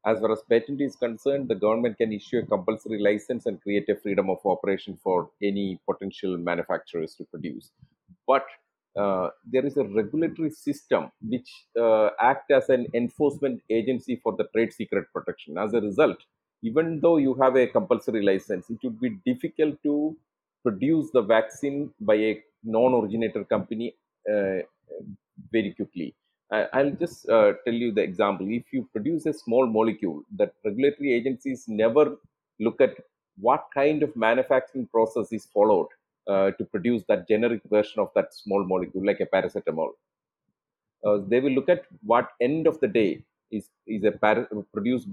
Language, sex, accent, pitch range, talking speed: English, male, Indian, 105-145 Hz, 165 wpm